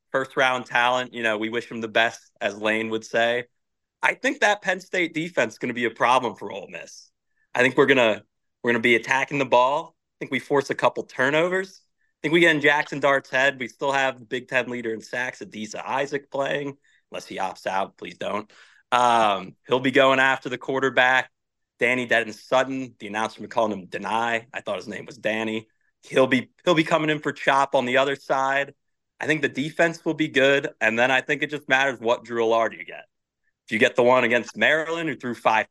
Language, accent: English, American